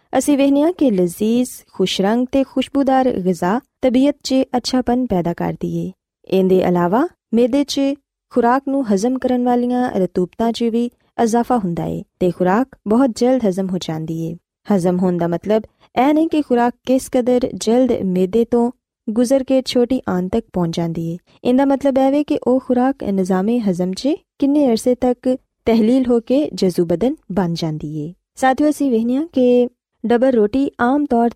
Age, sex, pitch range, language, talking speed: 20-39, female, 190-260 Hz, Punjabi, 160 wpm